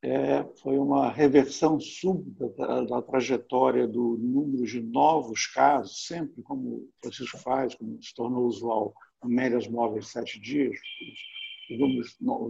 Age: 70-89